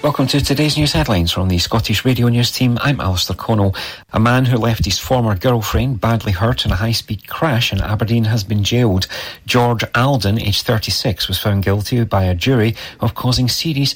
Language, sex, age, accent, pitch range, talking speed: English, male, 40-59, British, 95-120 Hz, 195 wpm